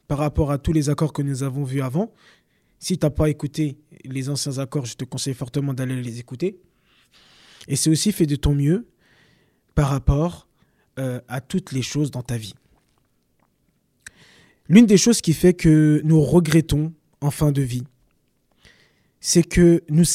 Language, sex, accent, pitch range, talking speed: French, male, French, 135-165 Hz, 175 wpm